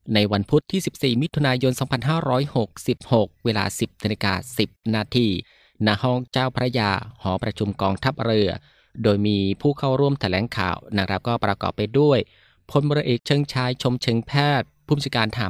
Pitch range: 105-130 Hz